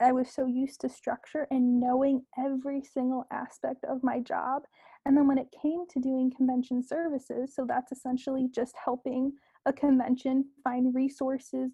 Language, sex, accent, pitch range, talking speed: English, female, American, 250-275 Hz, 165 wpm